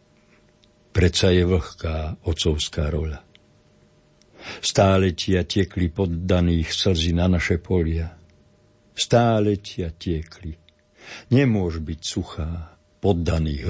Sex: male